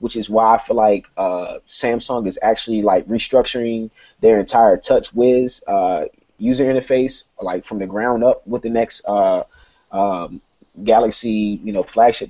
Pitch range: 105-160 Hz